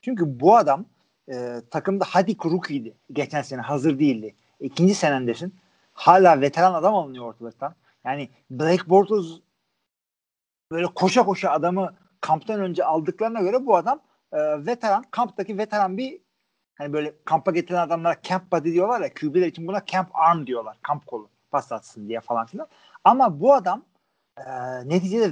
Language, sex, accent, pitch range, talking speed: Turkish, male, native, 145-210 Hz, 150 wpm